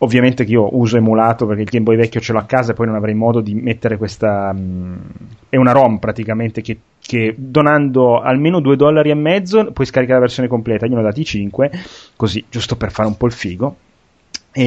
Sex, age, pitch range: male, 30-49, 110-150 Hz